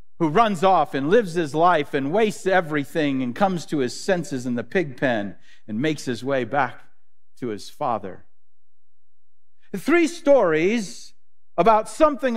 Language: English